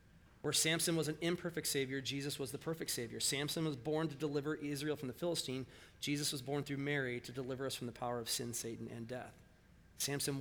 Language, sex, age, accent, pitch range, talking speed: English, male, 30-49, American, 125-150 Hz, 215 wpm